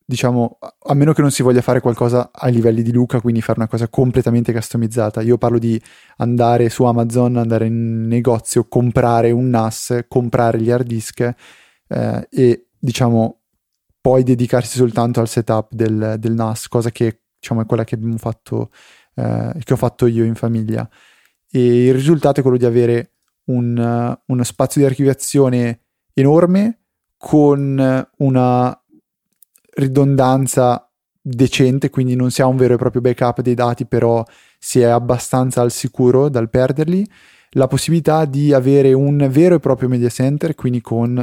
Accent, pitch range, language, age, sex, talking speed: native, 115-130 Hz, Italian, 20-39, male, 160 wpm